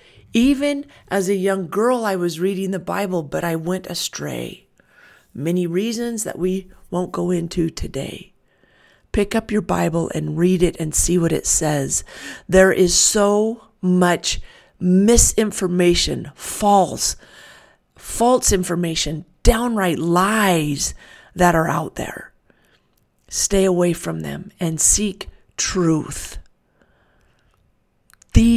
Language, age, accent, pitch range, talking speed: English, 40-59, American, 175-210 Hz, 120 wpm